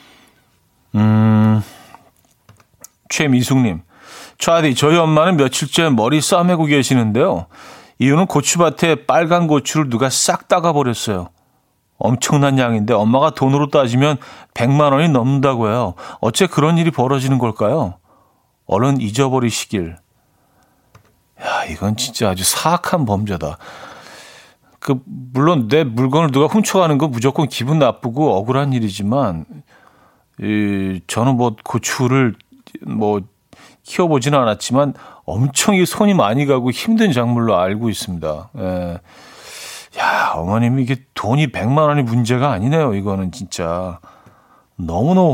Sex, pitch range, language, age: male, 105-145 Hz, Korean, 40-59